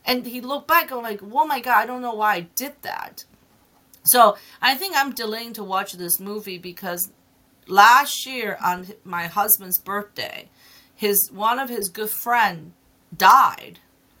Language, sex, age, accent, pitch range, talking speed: English, female, 40-59, American, 180-220 Hz, 165 wpm